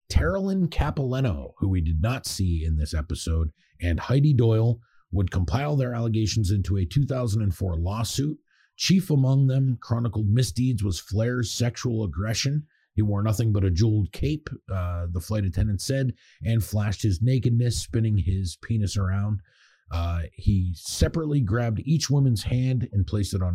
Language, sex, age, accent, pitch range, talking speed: English, male, 30-49, American, 90-115 Hz, 155 wpm